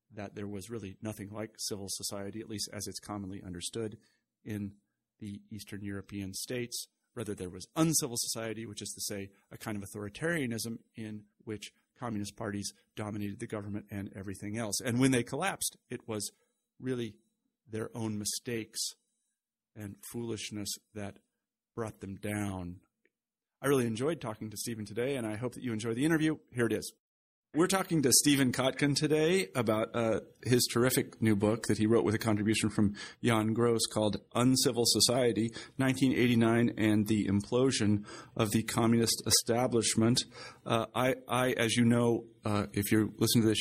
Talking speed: 165 wpm